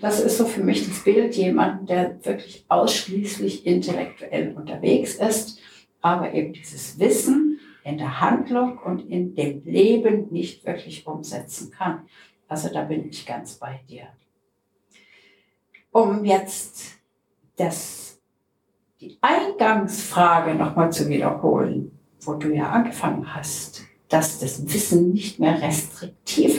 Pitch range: 160-230 Hz